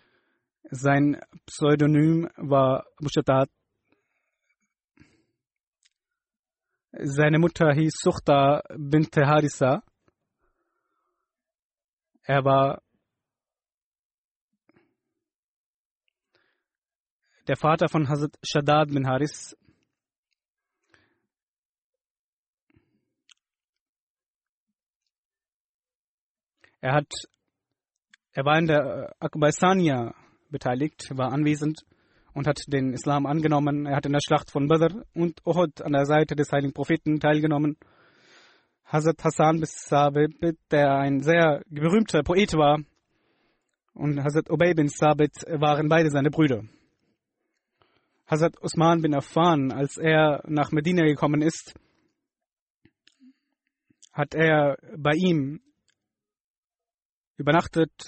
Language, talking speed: German, 85 wpm